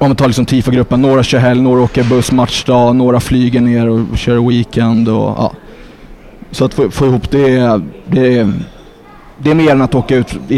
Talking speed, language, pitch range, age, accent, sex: 200 wpm, English, 120-140 Hz, 20-39, Swedish, male